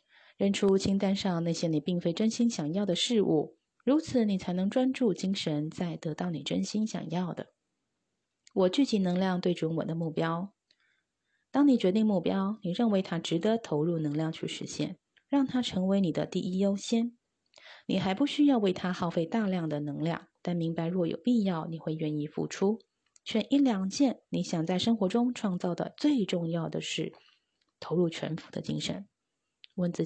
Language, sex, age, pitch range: Chinese, female, 20-39, 165-220 Hz